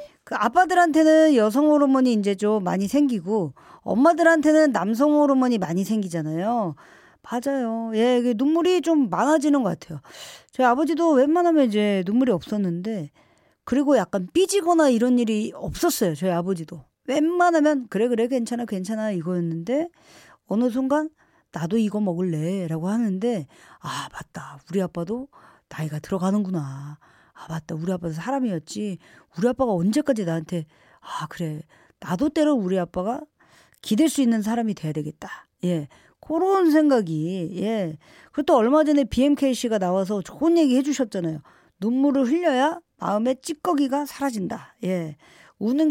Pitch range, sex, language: 185-295 Hz, female, Korean